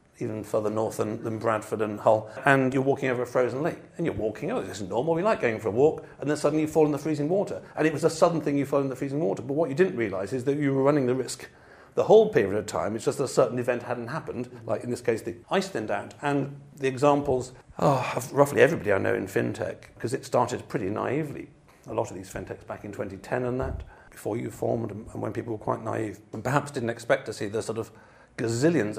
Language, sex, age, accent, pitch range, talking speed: English, male, 50-69, British, 115-145 Hz, 260 wpm